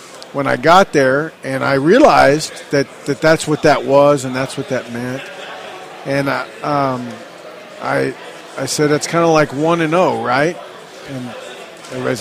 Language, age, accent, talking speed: English, 40-59, American, 165 wpm